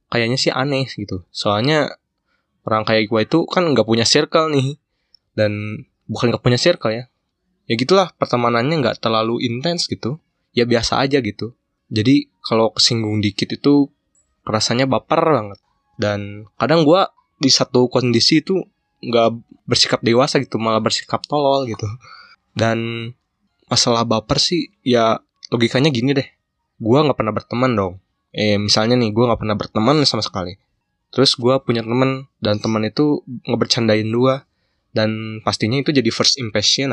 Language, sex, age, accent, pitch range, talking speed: Indonesian, male, 20-39, native, 110-130 Hz, 150 wpm